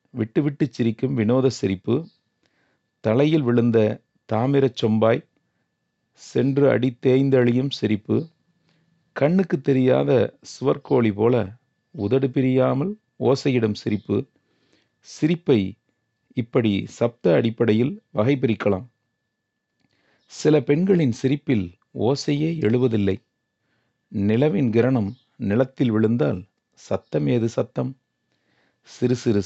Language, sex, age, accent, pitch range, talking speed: Tamil, male, 40-59, native, 105-135 Hz, 75 wpm